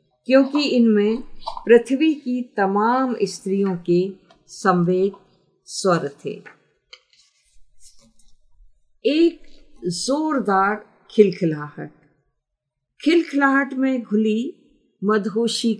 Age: 50-69